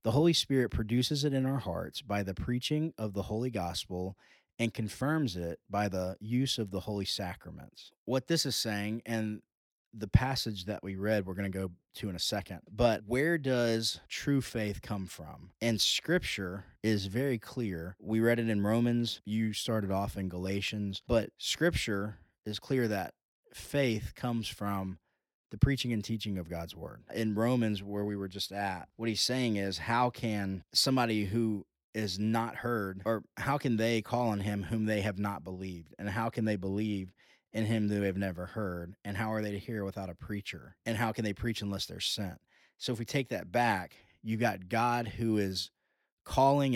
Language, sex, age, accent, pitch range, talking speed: English, male, 30-49, American, 100-120 Hz, 190 wpm